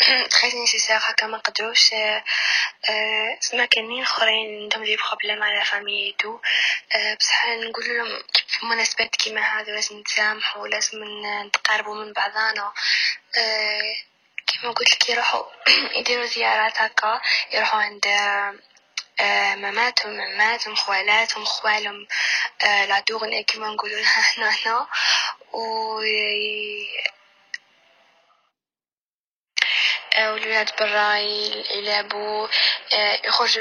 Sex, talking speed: female, 95 wpm